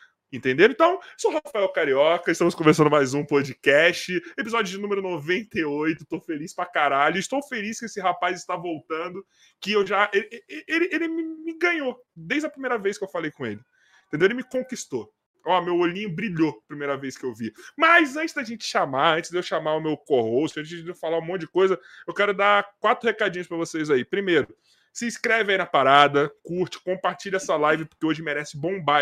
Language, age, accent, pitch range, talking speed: Portuguese, 20-39, Brazilian, 160-205 Hz, 205 wpm